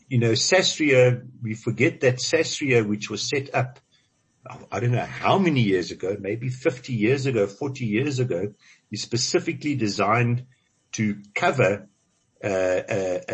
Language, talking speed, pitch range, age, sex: English, 145 wpm, 105-130 Hz, 60-79, male